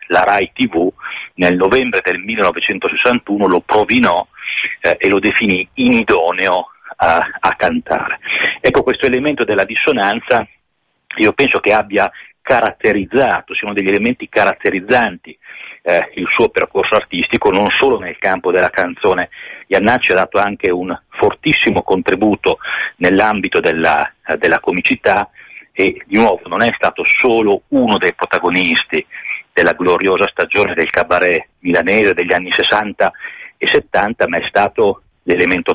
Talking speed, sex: 135 wpm, male